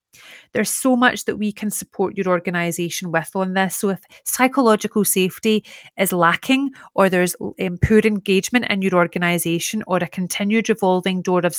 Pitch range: 175-205 Hz